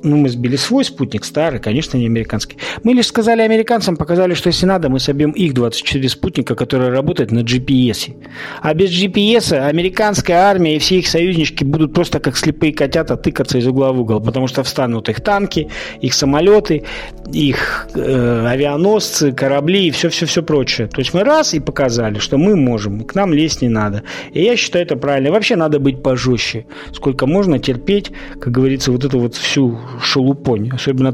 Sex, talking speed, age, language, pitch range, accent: male, 175 wpm, 40-59, Russian, 125-170 Hz, native